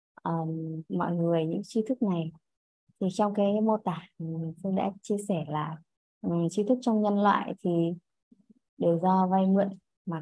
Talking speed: 170 wpm